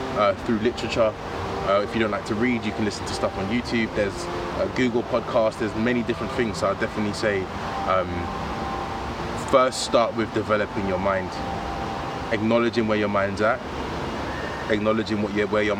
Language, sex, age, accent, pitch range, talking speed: English, male, 20-39, British, 100-120 Hz, 175 wpm